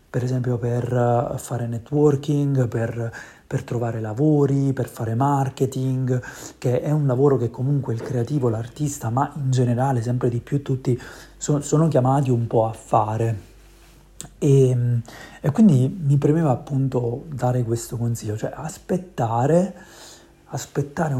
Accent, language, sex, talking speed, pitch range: native, Italian, male, 135 wpm, 120-140 Hz